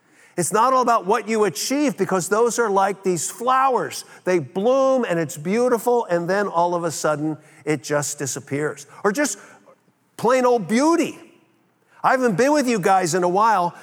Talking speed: 180 wpm